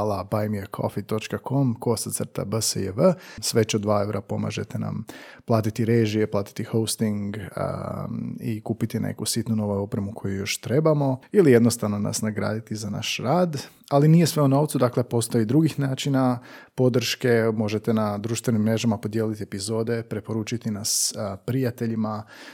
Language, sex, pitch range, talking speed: Croatian, male, 105-125 Hz, 135 wpm